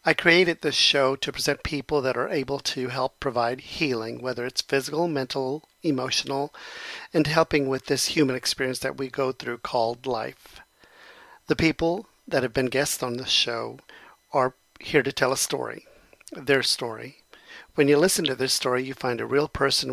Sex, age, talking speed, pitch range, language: male, 50-69, 180 wpm, 135-155 Hz, English